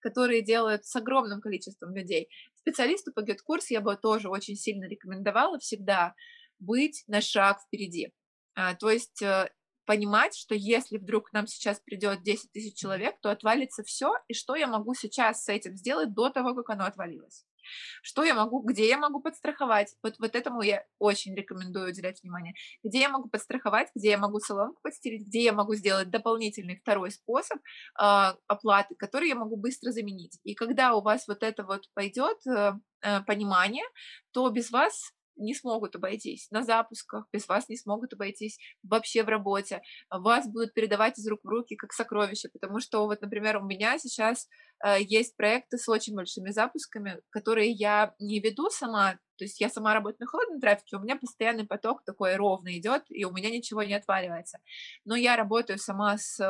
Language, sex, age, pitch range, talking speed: Russian, female, 20-39, 205-235 Hz, 175 wpm